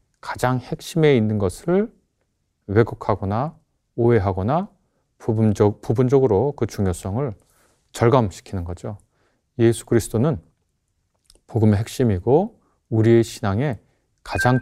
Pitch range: 100-140 Hz